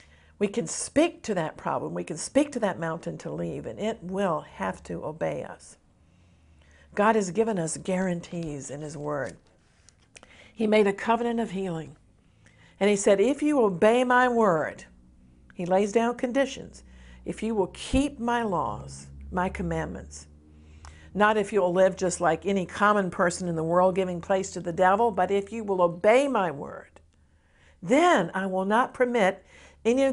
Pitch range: 165-225 Hz